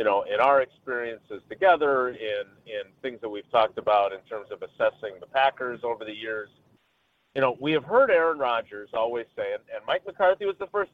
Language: English